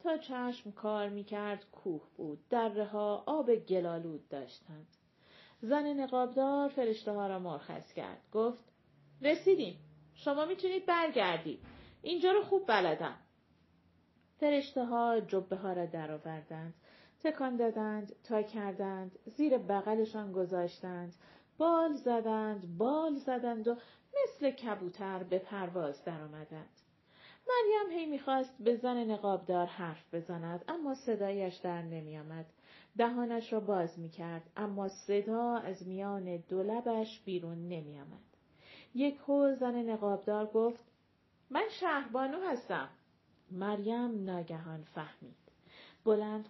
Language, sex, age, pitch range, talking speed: Persian, female, 40-59, 185-270 Hz, 110 wpm